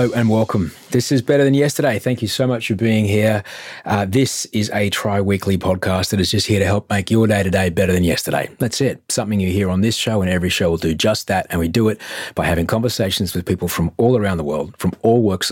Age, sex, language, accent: 40-59, male, English, Australian